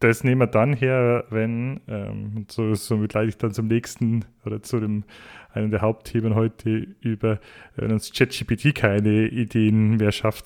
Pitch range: 110-120 Hz